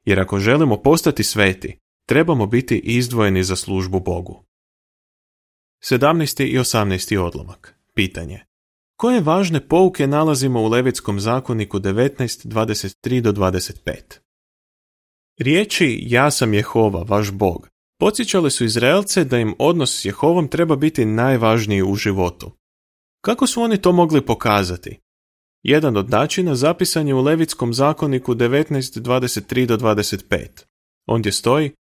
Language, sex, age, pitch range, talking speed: Croatian, male, 30-49, 100-140 Hz, 120 wpm